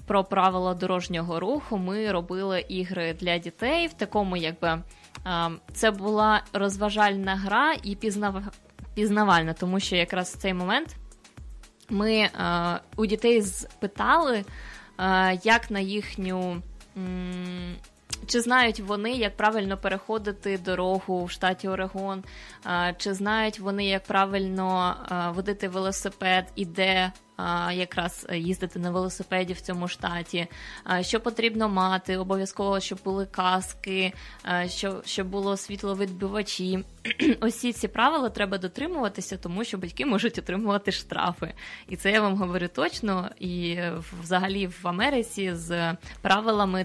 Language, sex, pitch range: Russian, female, 180-210 Hz